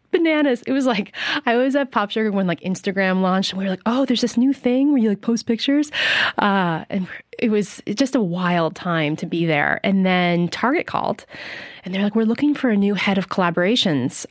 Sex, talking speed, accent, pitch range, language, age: female, 220 wpm, American, 170-205 Hz, English, 20-39